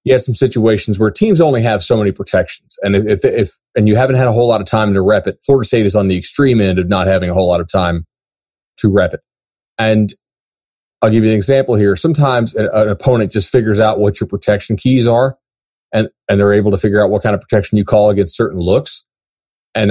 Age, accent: 30-49, American